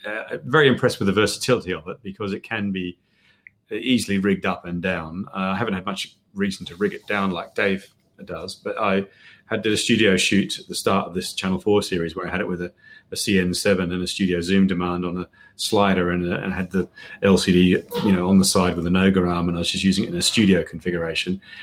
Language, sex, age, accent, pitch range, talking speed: English, male, 30-49, British, 90-105 Hz, 240 wpm